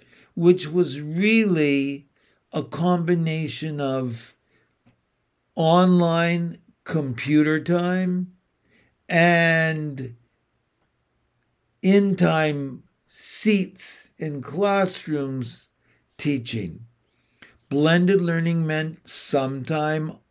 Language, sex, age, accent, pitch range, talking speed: English, male, 60-79, American, 135-180 Hz, 60 wpm